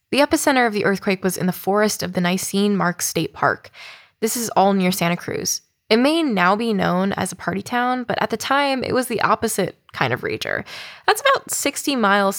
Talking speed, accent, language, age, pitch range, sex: 220 wpm, American, English, 10-29, 185-225 Hz, female